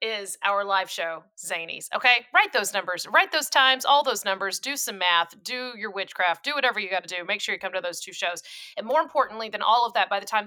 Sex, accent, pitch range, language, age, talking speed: female, American, 180-230 Hz, English, 30-49, 260 wpm